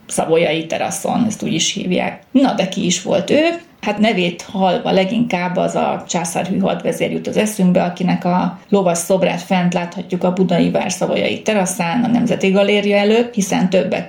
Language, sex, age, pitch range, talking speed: Hungarian, female, 30-49, 175-200 Hz, 170 wpm